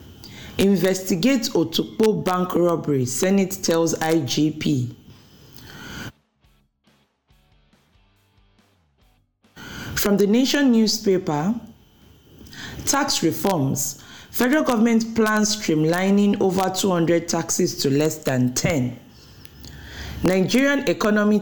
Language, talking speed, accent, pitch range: English, 75 wpm, Nigerian, 135-205 Hz